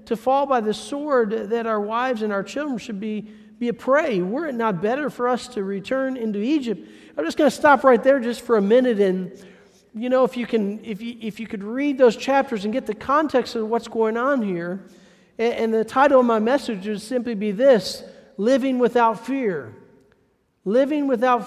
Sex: male